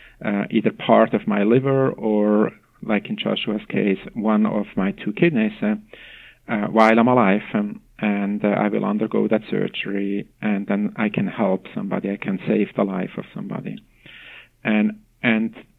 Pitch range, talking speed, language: 105-150 Hz, 165 wpm, English